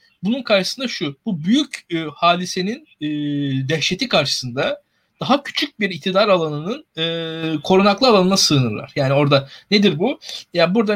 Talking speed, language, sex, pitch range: 135 wpm, Turkish, male, 160-210 Hz